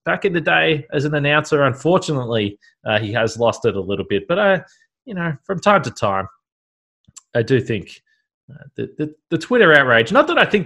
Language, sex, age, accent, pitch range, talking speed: English, male, 20-39, Australian, 115-160 Hz, 215 wpm